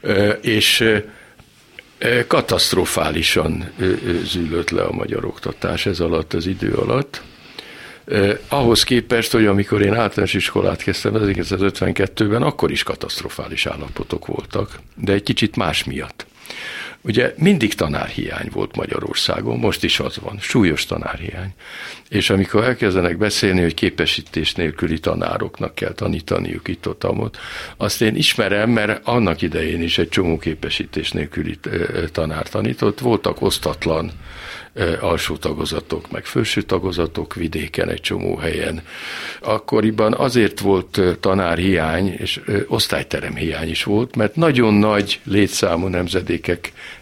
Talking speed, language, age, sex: 120 wpm, Hungarian, 60-79, male